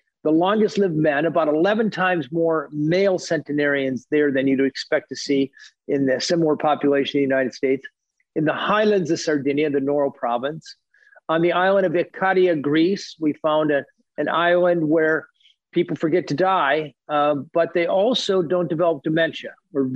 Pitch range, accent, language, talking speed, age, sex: 145-180 Hz, American, English, 165 wpm, 50-69, male